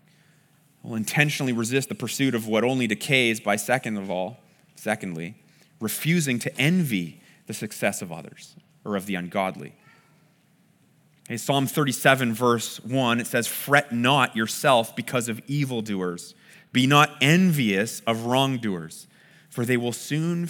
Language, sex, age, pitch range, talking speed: English, male, 30-49, 120-160 Hz, 135 wpm